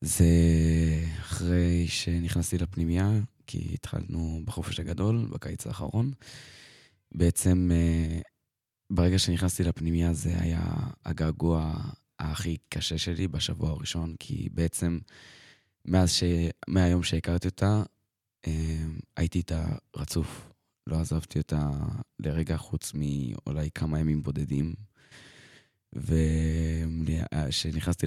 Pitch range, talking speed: 80-95 Hz, 90 wpm